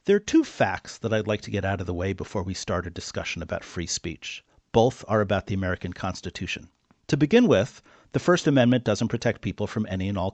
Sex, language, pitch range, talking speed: male, English, 100-140 Hz, 230 wpm